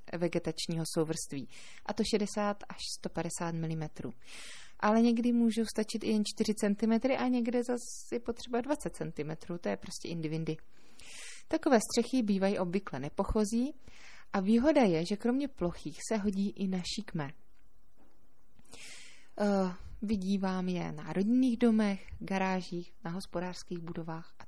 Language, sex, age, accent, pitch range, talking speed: Czech, female, 20-39, native, 175-225 Hz, 125 wpm